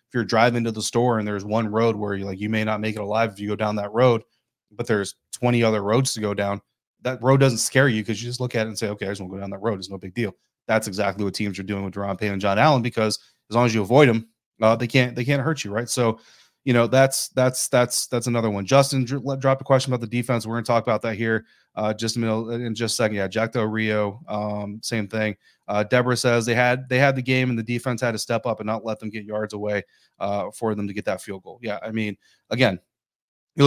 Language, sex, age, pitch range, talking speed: English, male, 30-49, 110-135 Hz, 280 wpm